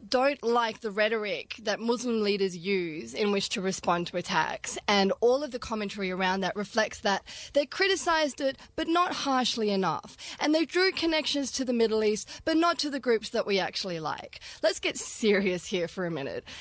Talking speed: 195 wpm